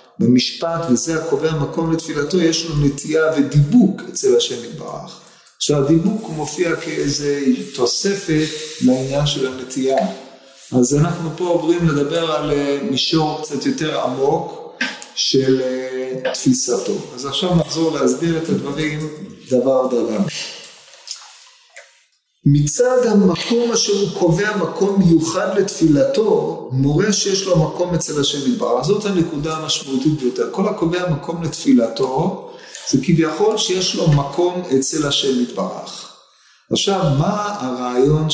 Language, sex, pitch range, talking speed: Hebrew, male, 140-190 Hz, 115 wpm